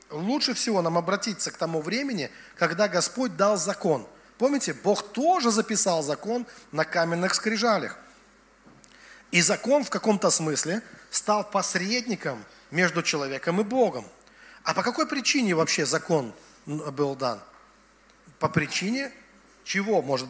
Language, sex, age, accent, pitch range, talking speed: Russian, male, 40-59, native, 165-215 Hz, 125 wpm